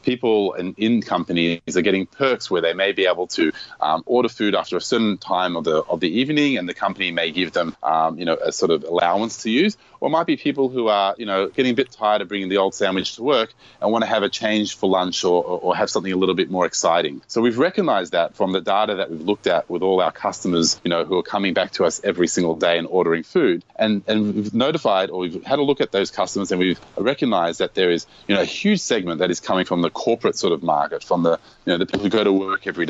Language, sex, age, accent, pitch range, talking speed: English, male, 30-49, Australian, 95-115 Hz, 275 wpm